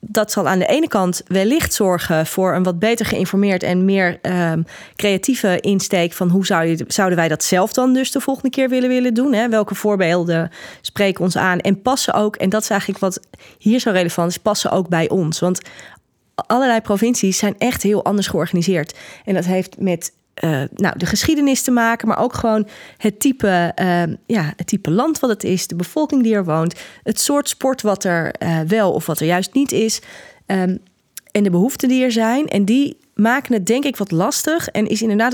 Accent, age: Dutch, 30-49